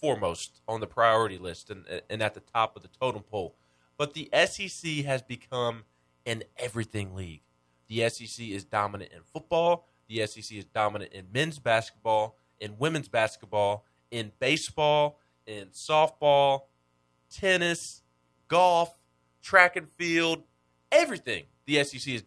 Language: English